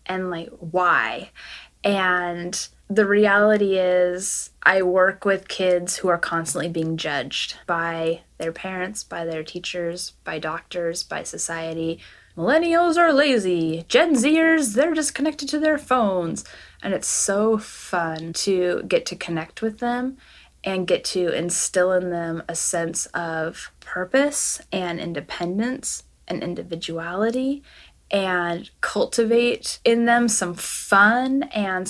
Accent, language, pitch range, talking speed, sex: American, English, 175-235 Hz, 130 wpm, female